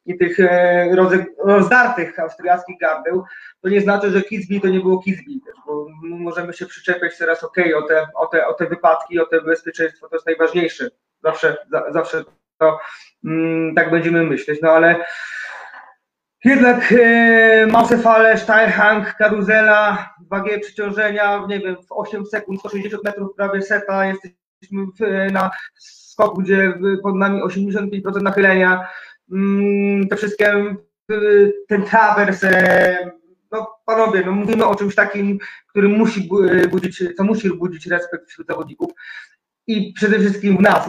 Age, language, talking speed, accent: 20-39, Polish, 135 wpm, native